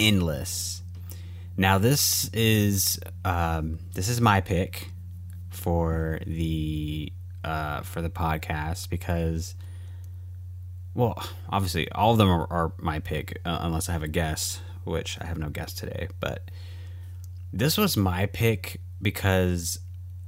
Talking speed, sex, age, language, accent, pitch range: 125 wpm, male, 20-39, English, American, 85-95 Hz